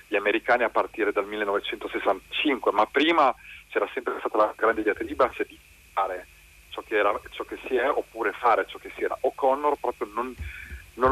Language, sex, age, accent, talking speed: Italian, male, 40-59, native, 190 wpm